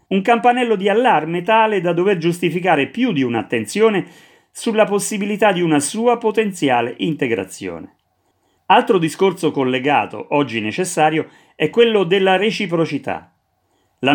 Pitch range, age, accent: 145-200 Hz, 40-59, native